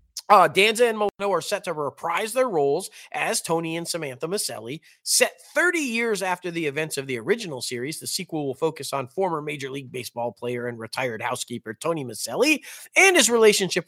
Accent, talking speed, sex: American, 185 wpm, male